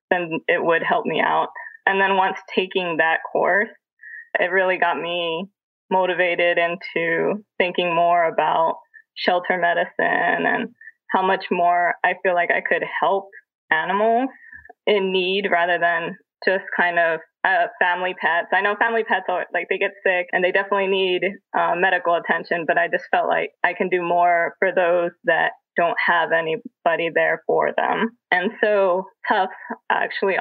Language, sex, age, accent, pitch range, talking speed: English, female, 20-39, American, 175-230 Hz, 165 wpm